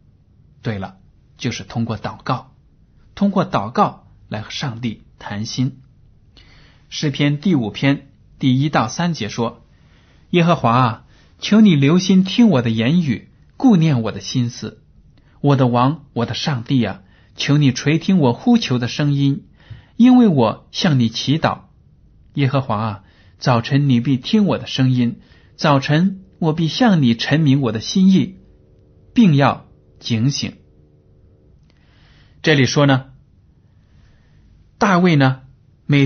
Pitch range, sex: 115-155 Hz, male